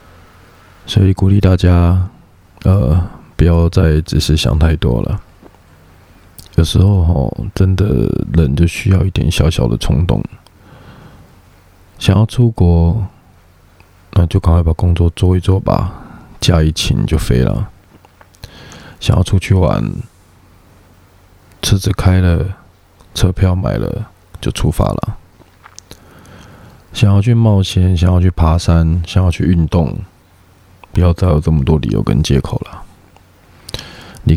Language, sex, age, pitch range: Chinese, male, 20-39, 85-95 Hz